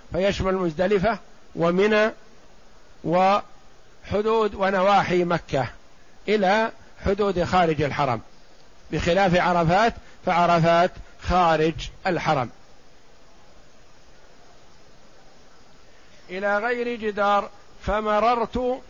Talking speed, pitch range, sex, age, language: 60 wpm, 175-210 Hz, male, 50-69, Arabic